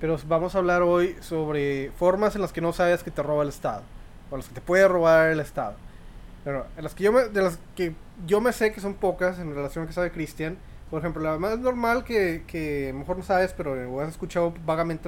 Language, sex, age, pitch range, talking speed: Spanish, male, 20-39, 160-210 Hz, 245 wpm